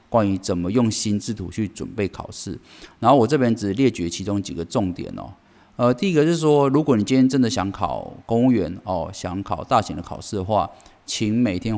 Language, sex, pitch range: Chinese, male, 95-125 Hz